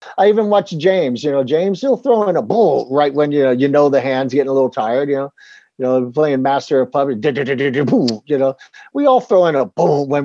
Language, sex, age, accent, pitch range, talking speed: English, male, 50-69, American, 135-180 Hz, 240 wpm